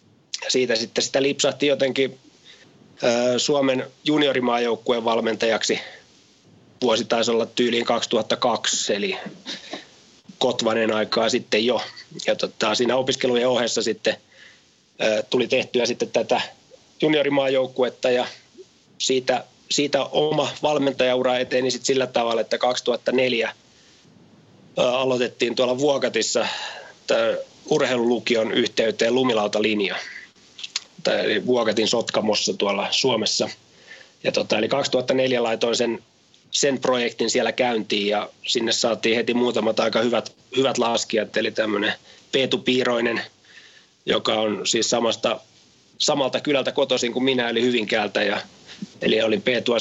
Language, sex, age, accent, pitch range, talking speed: Finnish, male, 30-49, native, 115-130 Hz, 105 wpm